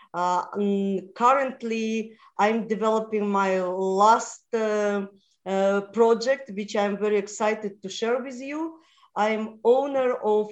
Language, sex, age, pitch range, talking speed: English, female, 40-59, 200-250 Hz, 115 wpm